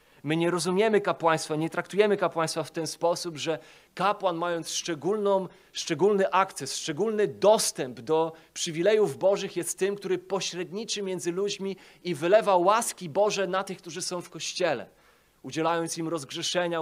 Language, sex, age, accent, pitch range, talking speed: Polish, male, 30-49, native, 140-185 Hz, 145 wpm